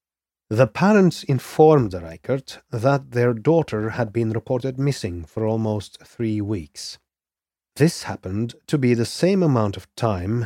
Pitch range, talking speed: 90-125 Hz, 145 wpm